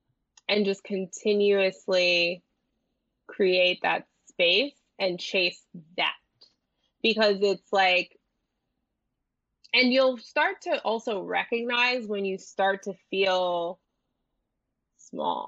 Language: English